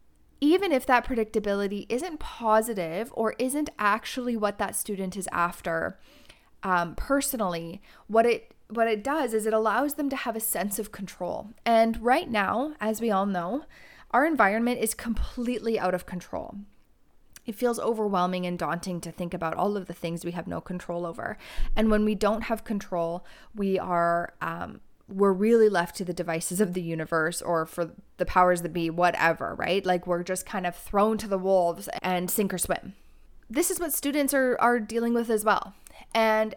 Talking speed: 185 wpm